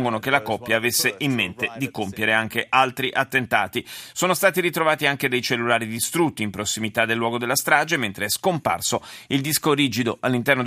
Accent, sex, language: native, male, Italian